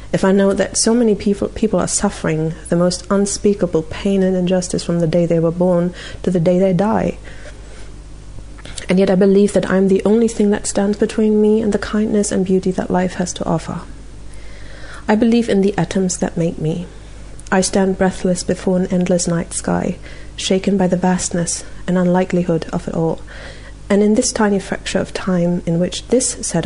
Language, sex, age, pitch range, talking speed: English, female, 30-49, 175-200 Hz, 195 wpm